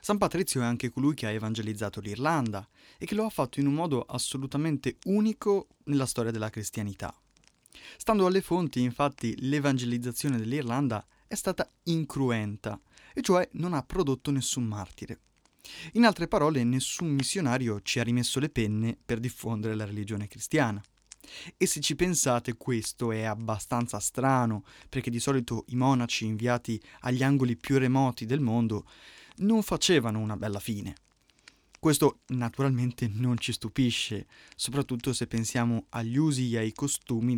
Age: 20-39